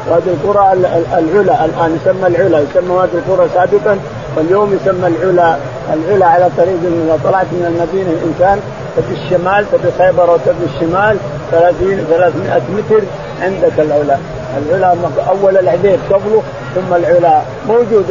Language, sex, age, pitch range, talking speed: Arabic, male, 50-69, 165-200 Hz, 135 wpm